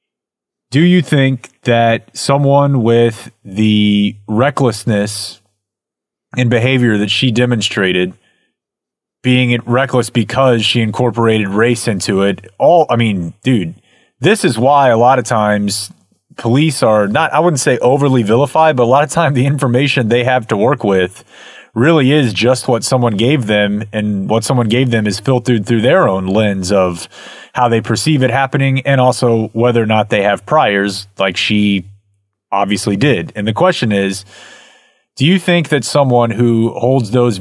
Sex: male